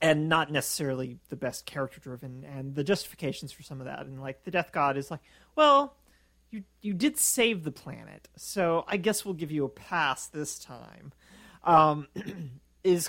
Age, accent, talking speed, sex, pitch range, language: 40-59, American, 185 wpm, male, 130-170 Hz, English